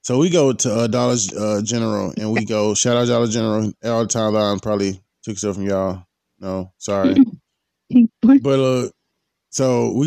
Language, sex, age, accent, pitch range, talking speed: English, male, 20-39, American, 105-135 Hz, 180 wpm